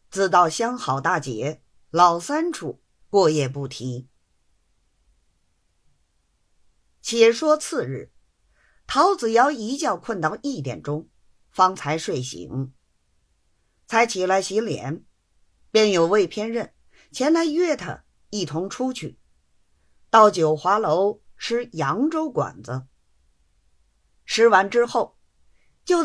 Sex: female